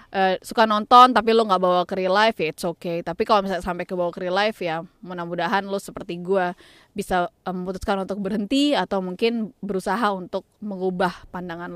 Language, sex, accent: Indonesian, female, native